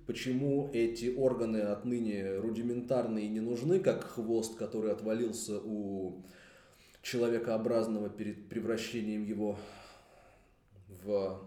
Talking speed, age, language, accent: 95 wpm, 20-39, Russian, native